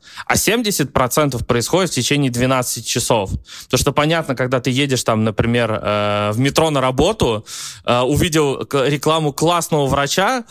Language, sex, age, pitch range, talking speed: Russian, male, 20-39, 130-175 Hz, 130 wpm